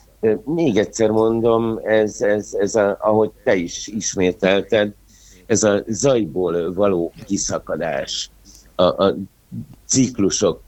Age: 60-79